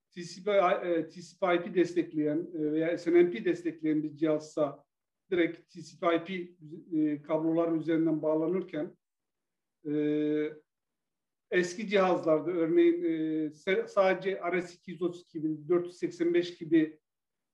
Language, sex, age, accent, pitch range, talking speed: Turkish, male, 50-69, native, 165-195 Hz, 65 wpm